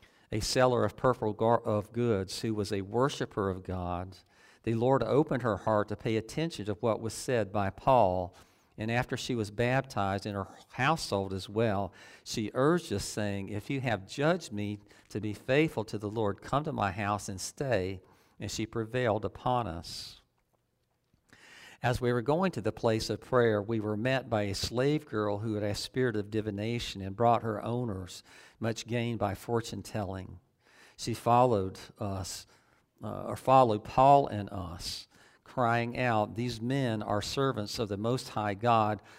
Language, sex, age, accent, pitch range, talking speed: English, male, 50-69, American, 100-120 Hz, 170 wpm